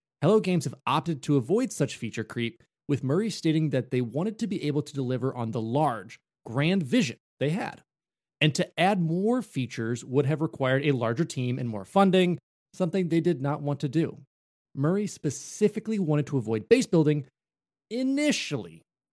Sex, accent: male, American